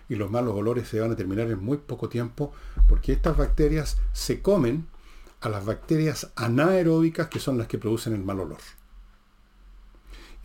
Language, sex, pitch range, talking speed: Spanish, male, 110-140 Hz, 170 wpm